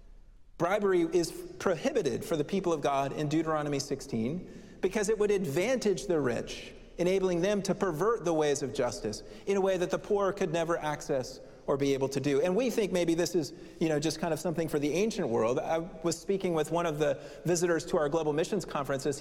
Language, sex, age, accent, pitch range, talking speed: English, male, 40-59, American, 150-185 Hz, 210 wpm